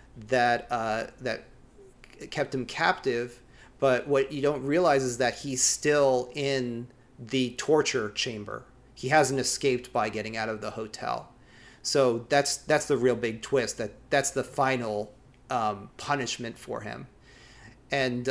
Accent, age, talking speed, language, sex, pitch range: American, 30-49, 145 wpm, English, male, 120-135 Hz